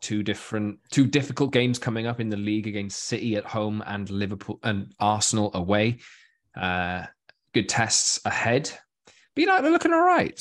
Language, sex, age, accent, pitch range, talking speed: English, male, 20-39, British, 100-130 Hz, 175 wpm